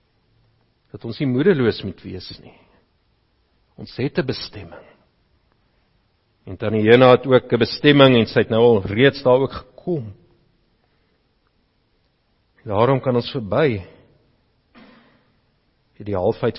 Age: 50-69